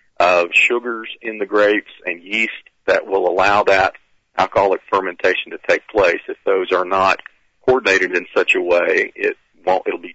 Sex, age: male, 50-69